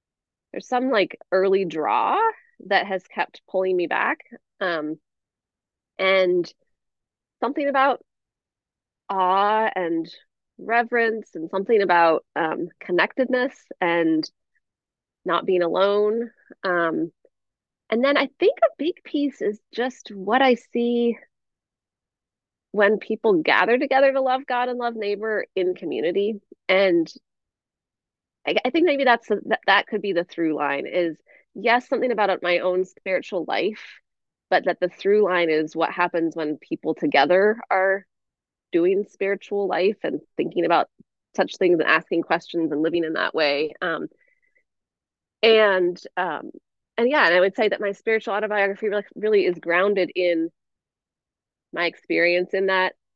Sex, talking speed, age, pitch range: female, 135 wpm, 20-39, 175-235 Hz